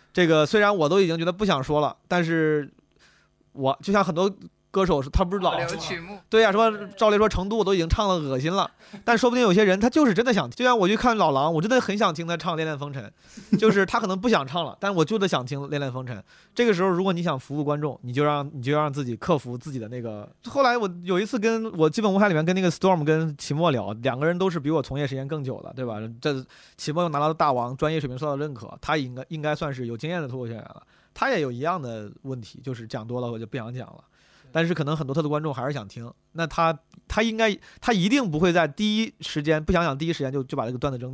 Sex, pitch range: male, 135-180 Hz